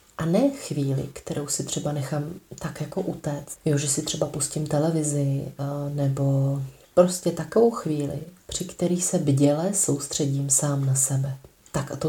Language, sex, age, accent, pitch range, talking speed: Czech, female, 30-49, native, 145-165 Hz, 155 wpm